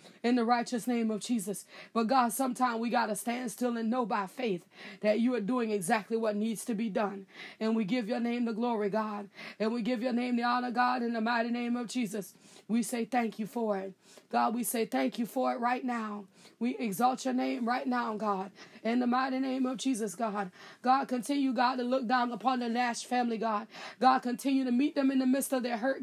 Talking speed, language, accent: 235 wpm, English, American